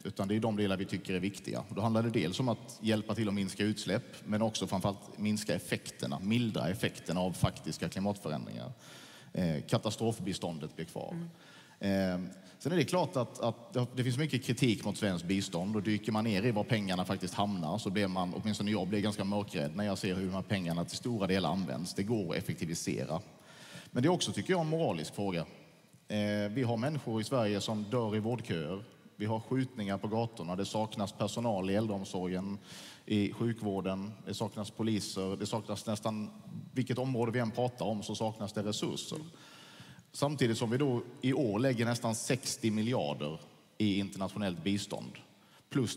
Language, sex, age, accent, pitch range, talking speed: English, male, 30-49, Norwegian, 100-115 Hz, 185 wpm